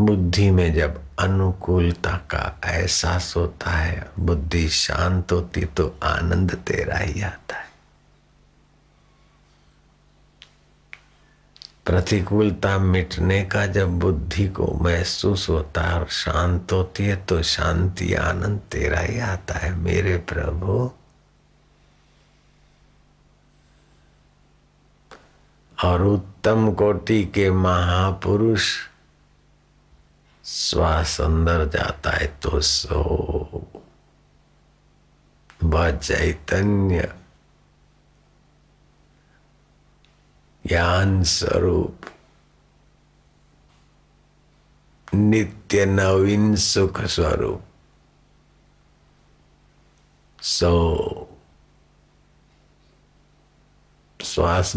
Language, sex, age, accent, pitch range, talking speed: Hindi, male, 50-69, native, 80-95 Hz, 60 wpm